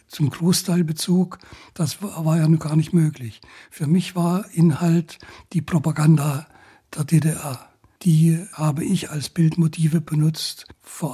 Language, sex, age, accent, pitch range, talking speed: German, male, 60-79, German, 145-170 Hz, 140 wpm